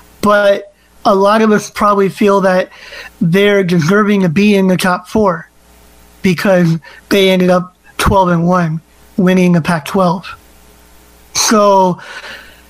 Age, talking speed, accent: 20-39, 125 wpm, American